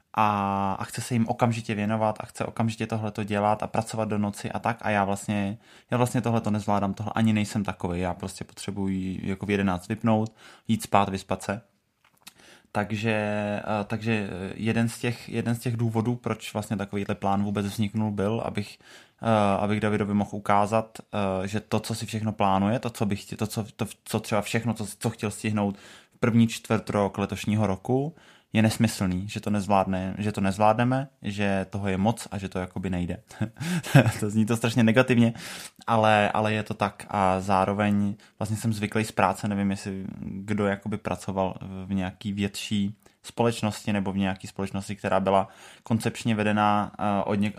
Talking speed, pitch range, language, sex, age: 175 wpm, 100-110 Hz, Czech, male, 20-39